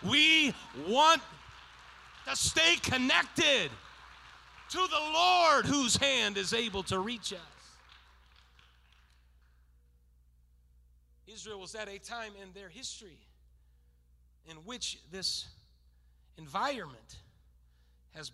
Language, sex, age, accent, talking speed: English, male, 40-59, American, 90 wpm